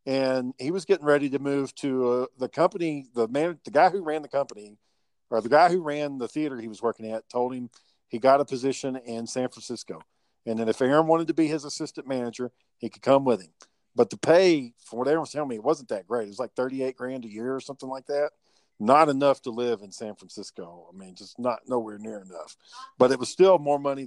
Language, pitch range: English, 120-150 Hz